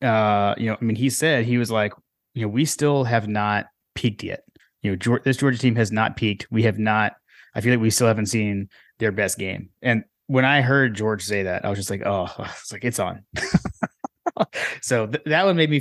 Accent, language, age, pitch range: American, English, 30-49, 105-125 Hz